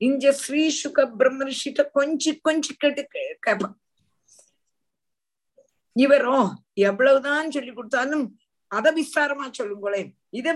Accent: native